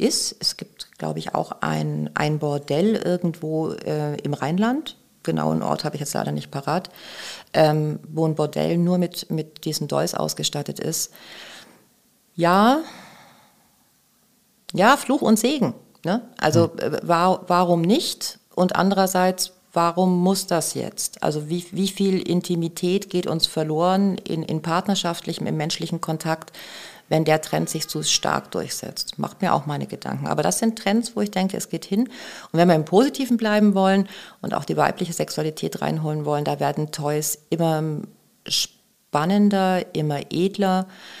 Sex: female